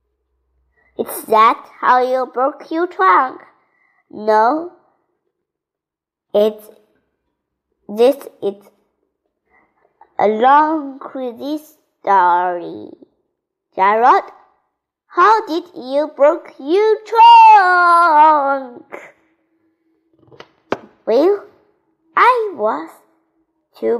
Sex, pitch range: male, 250-350 Hz